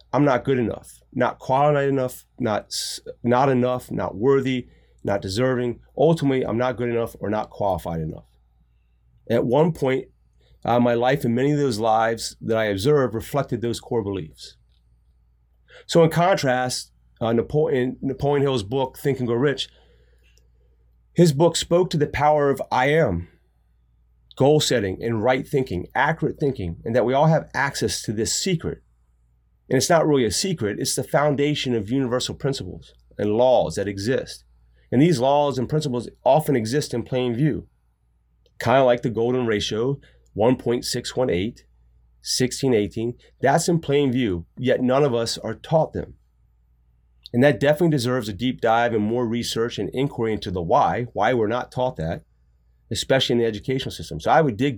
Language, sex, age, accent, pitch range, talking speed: English, male, 30-49, American, 85-135 Hz, 165 wpm